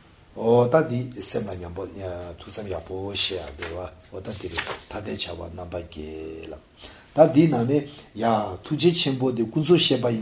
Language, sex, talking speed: English, male, 100 wpm